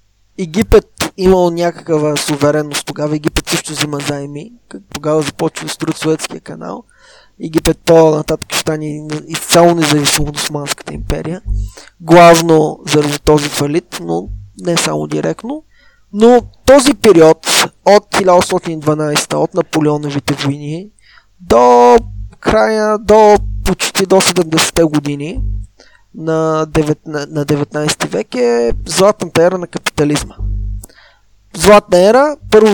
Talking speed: 105 wpm